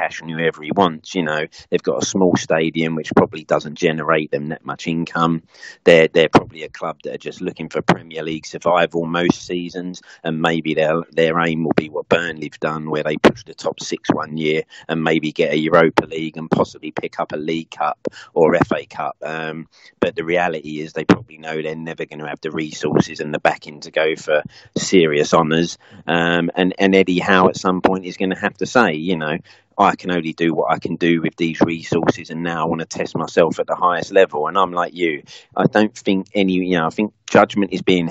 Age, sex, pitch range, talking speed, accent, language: 40-59, male, 80-90 Hz, 230 wpm, British, English